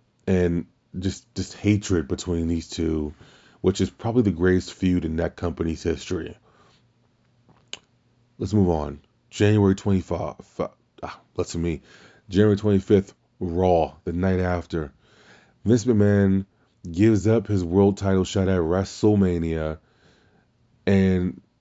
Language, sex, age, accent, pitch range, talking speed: English, male, 20-39, American, 90-110 Hz, 120 wpm